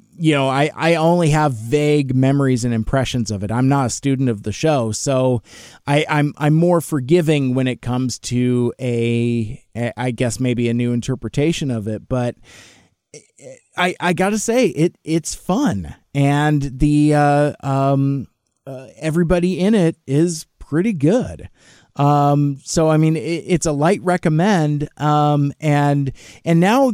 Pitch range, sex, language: 125-155 Hz, male, English